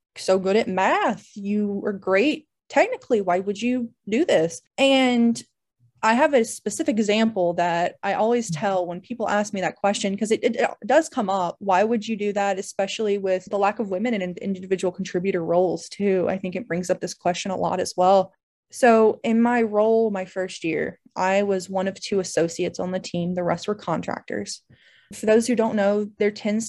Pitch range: 190-230 Hz